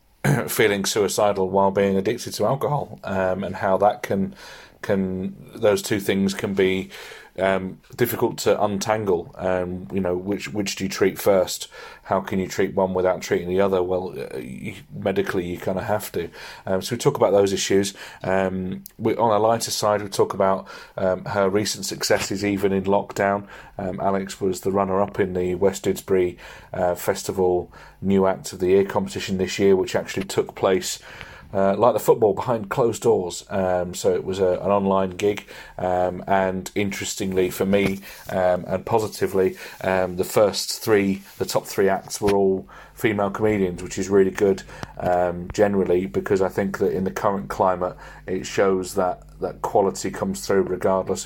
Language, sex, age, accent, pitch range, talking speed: English, male, 30-49, British, 90-100 Hz, 175 wpm